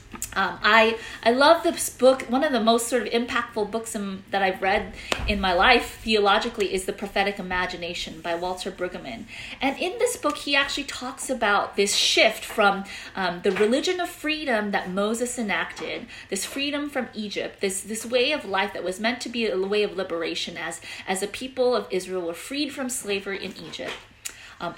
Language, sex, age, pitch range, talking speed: English, female, 30-49, 190-255 Hz, 190 wpm